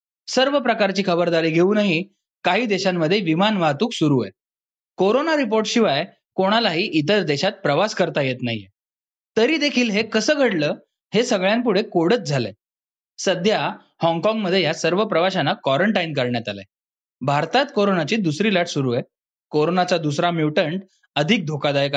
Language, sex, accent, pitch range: Marathi, male, native, 150-220 Hz